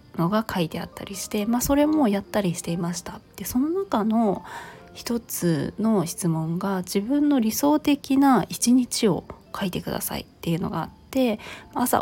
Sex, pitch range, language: female, 175-235 Hz, Japanese